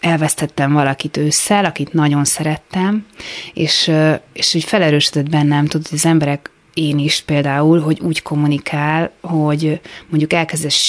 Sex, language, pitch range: female, Hungarian, 140-170 Hz